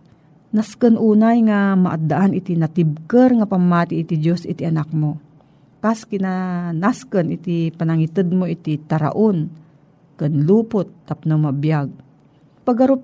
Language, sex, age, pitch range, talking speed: Filipino, female, 50-69, 160-205 Hz, 120 wpm